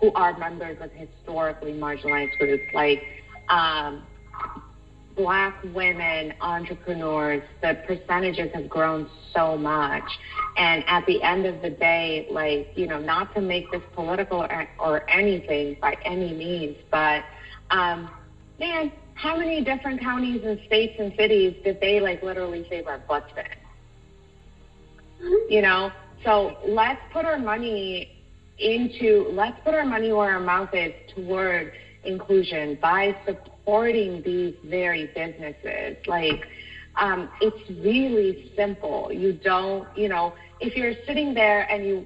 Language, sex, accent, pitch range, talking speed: English, female, American, 165-215 Hz, 135 wpm